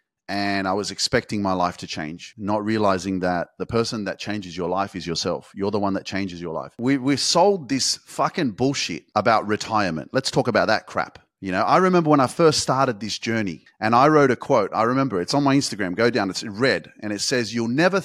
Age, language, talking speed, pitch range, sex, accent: 30-49, English, 235 wpm, 120-200 Hz, male, Australian